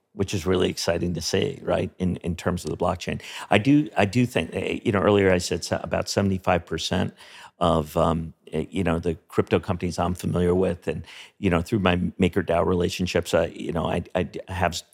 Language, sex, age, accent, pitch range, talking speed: English, male, 50-69, American, 90-100 Hz, 195 wpm